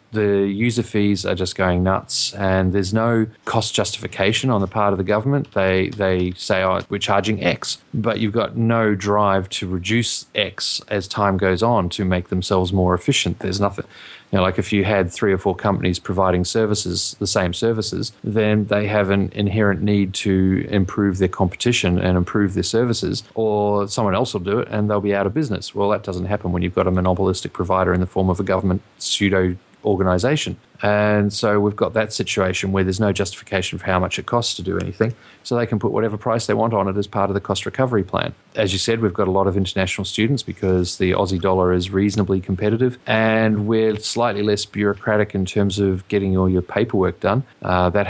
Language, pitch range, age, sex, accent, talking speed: English, 95-105 Hz, 30-49, male, Australian, 210 wpm